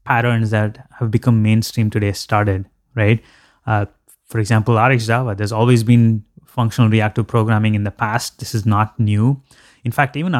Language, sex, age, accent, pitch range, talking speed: English, male, 20-39, Indian, 110-125 Hz, 160 wpm